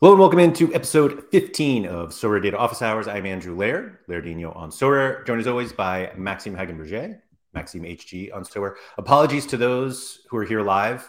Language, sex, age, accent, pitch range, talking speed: English, male, 30-49, American, 90-120 Hz, 190 wpm